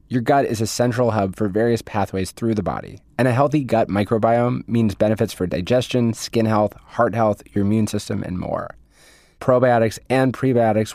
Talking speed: 180 wpm